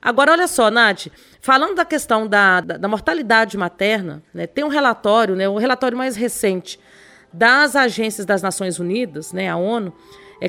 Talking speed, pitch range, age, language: 175 wpm, 200-265 Hz, 40-59, Portuguese